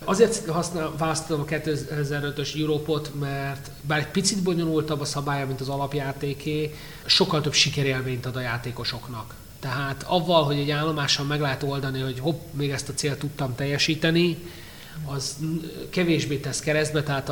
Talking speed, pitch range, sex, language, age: 150 wpm, 130-150 Hz, male, Hungarian, 30-49